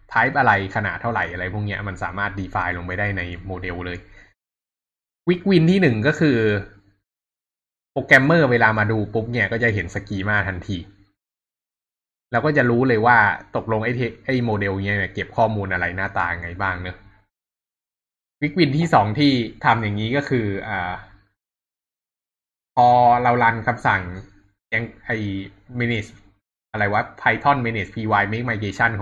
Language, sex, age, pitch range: Thai, male, 20-39, 95-115 Hz